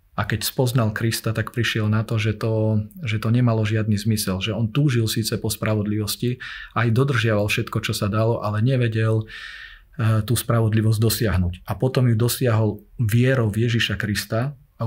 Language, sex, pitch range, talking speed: Slovak, male, 105-115 Hz, 165 wpm